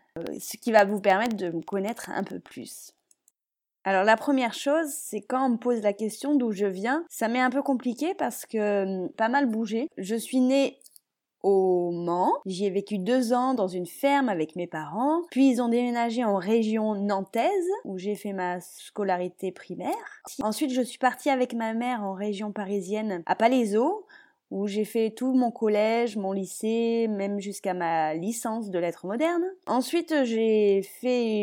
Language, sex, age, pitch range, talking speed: French, female, 20-39, 200-255 Hz, 180 wpm